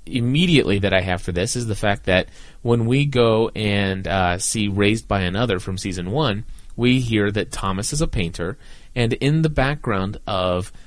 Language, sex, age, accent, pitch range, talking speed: English, male, 30-49, American, 95-120 Hz, 190 wpm